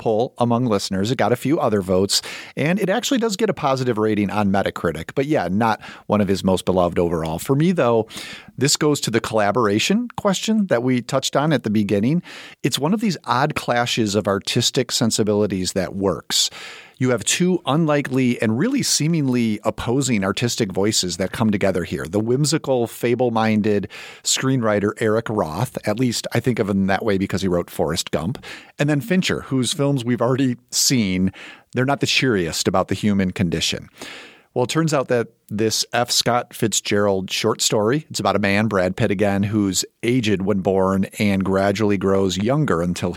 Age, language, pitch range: 40-59, English, 100-130 Hz